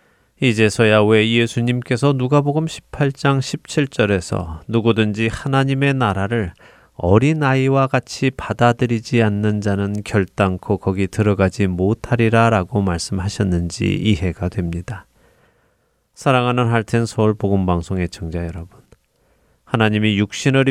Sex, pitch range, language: male, 95-125 Hz, Korean